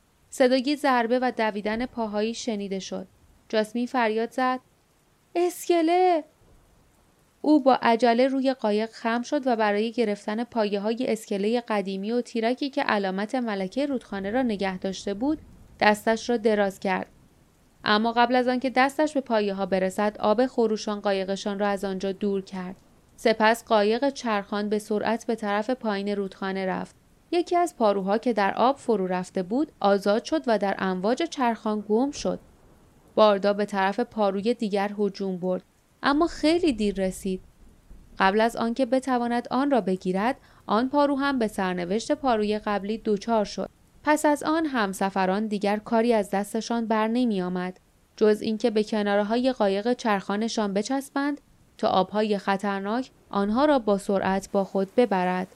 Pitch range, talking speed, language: 200-245 Hz, 150 wpm, Persian